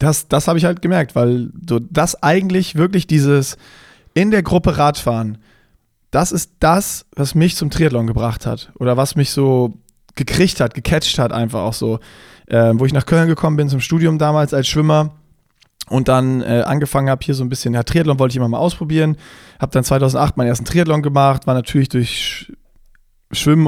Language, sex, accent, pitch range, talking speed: German, male, German, 125-150 Hz, 190 wpm